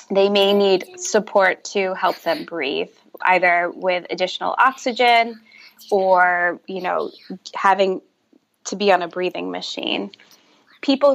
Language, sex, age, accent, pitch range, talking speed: English, female, 20-39, American, 185-215 Hz, 125 wpm